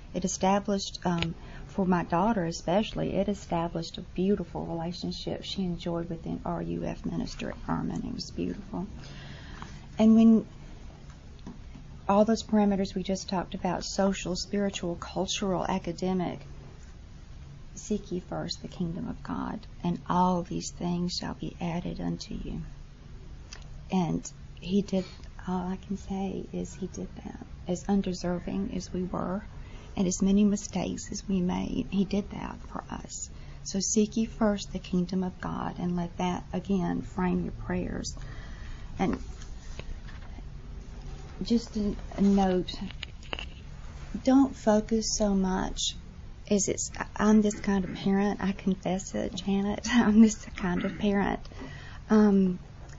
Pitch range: 175-205 Hz